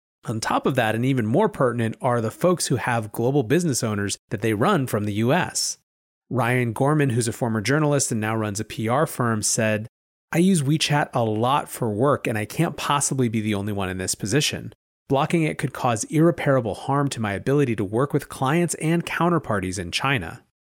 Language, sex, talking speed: English, male, 205 wpm